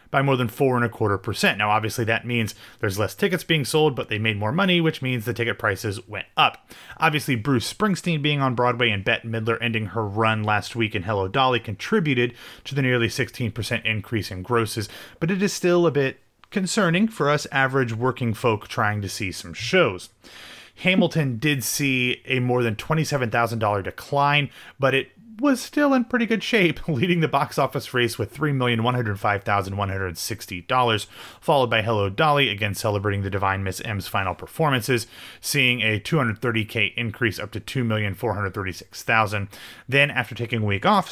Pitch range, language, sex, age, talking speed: 105-135 Hz, English, male, 30-49, 180 wpm